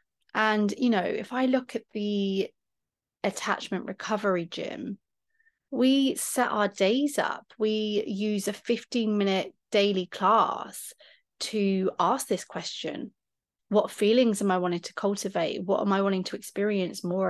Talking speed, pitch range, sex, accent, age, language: 140 wpm, 180-215 Hz, female, British, 30-49, English